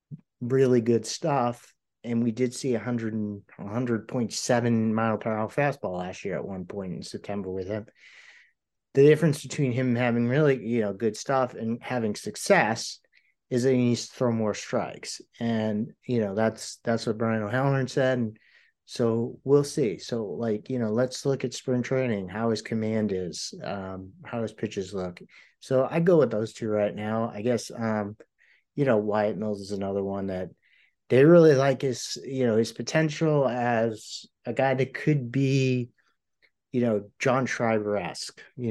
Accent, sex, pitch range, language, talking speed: American, male, 105-125 Hz, English, 175 wpm